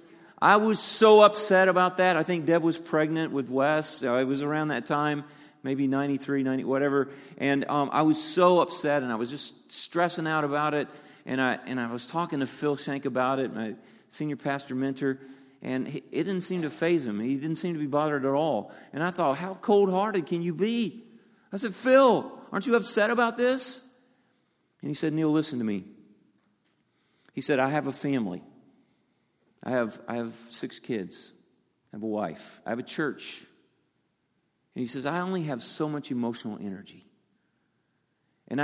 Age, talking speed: 50-69, 185 wpm